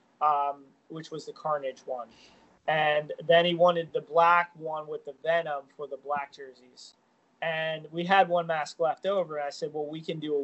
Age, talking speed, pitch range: 20-39, 195 wpm, 150-180 Hz